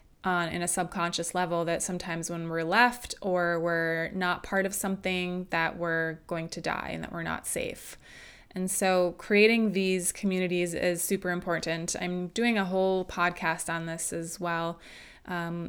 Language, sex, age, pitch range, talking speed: English, female, 20-39, 170-190 Hz, 170 wpm